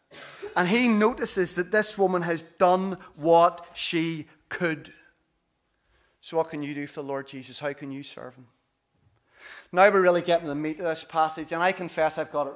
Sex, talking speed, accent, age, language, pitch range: male, 195 wpm, British, 30-49, English, 165-195 Hz